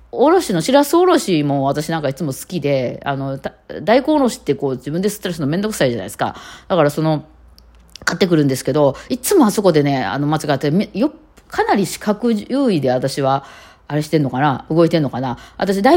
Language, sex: Japanese, female